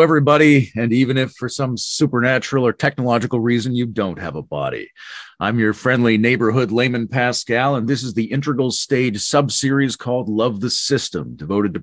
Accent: American